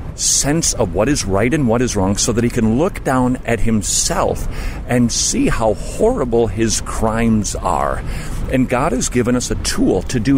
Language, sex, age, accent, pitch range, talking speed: English, male, 40-59, American, 105-135 Hz, 190 wpm